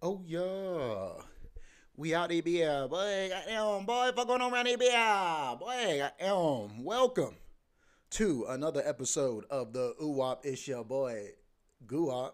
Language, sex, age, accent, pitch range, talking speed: English, male, 30-49, American, 120-155 Hz, 125 wpm